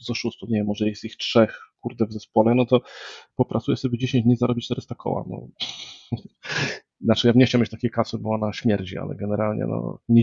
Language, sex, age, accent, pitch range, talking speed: Polish, male, 40-59, native, 105-120 Hz, 200 wpm